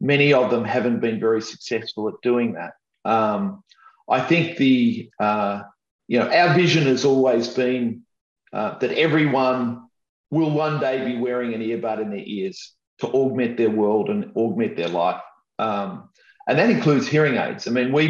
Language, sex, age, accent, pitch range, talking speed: English, male, 40-59, Australian, 115-145 Hz, 170 wpm